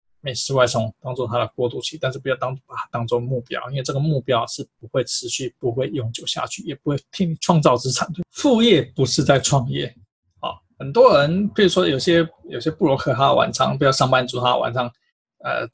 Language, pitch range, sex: Chinese, 135-205 Hz, male